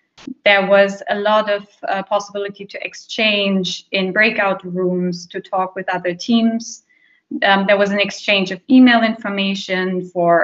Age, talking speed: 20-39, 150 wpm